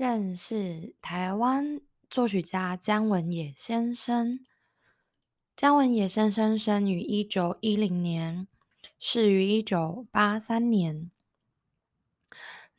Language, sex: Chinese, female